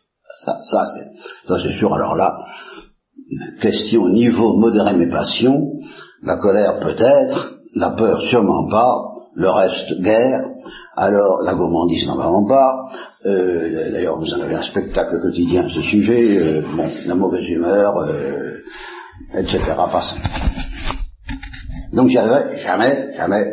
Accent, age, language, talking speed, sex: French, 60-79, Italian, 140 wpm, male